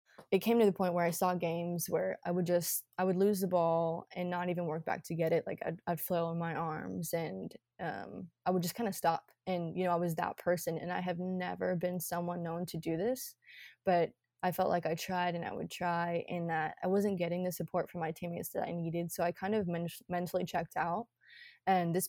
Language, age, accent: English, 20-39, American